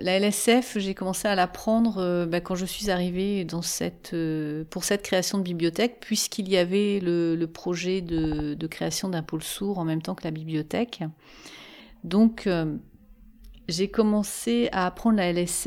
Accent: French